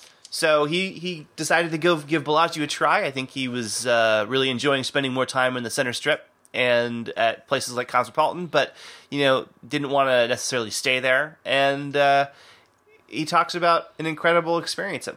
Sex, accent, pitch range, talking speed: male, American, 115-160 Hz, 185 wpm